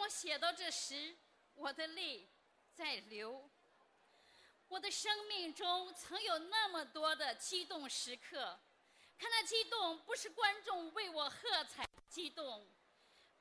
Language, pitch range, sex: Chinese, 285-390 Hz, female